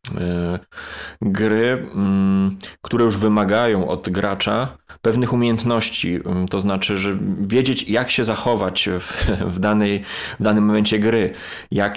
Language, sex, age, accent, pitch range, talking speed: Polish, male, 20-39, native, 100-110 Hz, 110 wpm